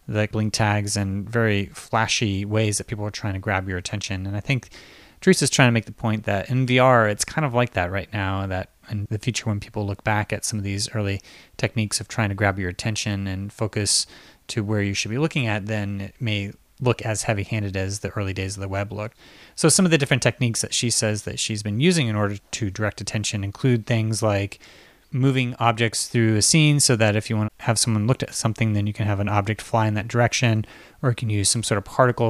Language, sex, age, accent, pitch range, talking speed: English, male, 30-49, American, 105-120 Hz, 245 wpm